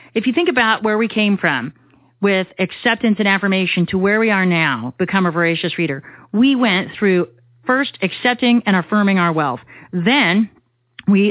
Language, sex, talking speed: English, female, 170 wpm